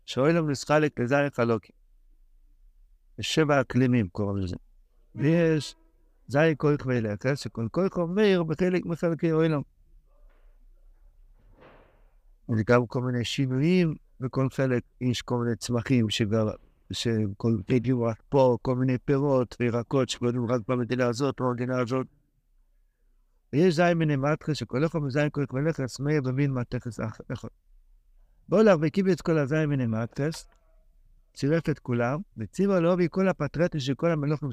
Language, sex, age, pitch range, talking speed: Hebrew, male, 60-79, 120-165 Hz, 135 wpm